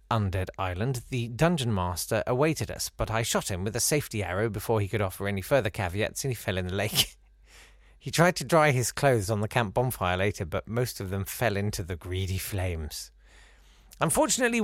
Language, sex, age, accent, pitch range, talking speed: English, male, 40-59, British, 95-130 Hz, 200 wpm